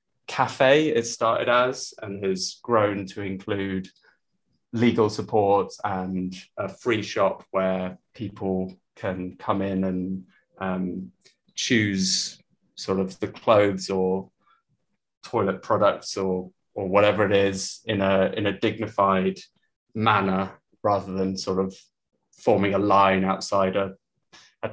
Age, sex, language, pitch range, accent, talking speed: 20-39, male, English, 95-115 Hz, British, 125 wpm